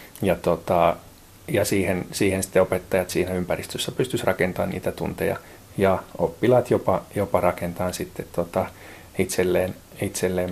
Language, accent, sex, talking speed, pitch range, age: Finnish, native, male, 125 wpm, 90-105 Hz, 30-49